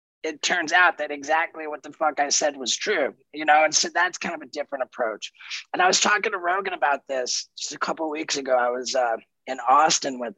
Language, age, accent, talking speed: English, 30-49, American, 245 wpm